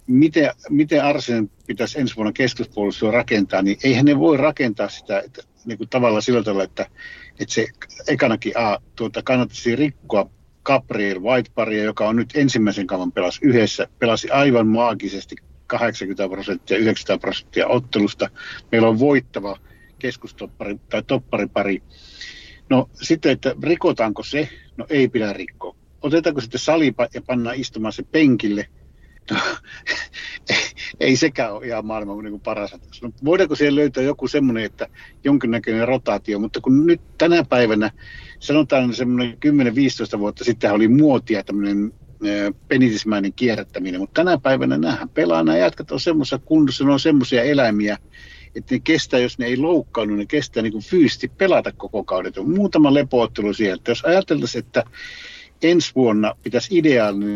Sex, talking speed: male, 140 wpm